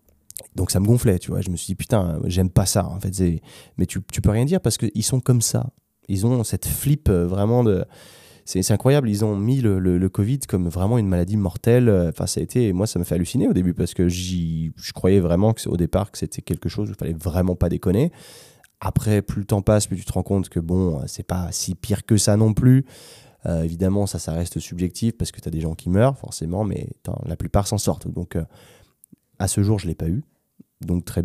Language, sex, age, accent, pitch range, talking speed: French, male, 20-39, French, 90-110 Hz, 250 wpm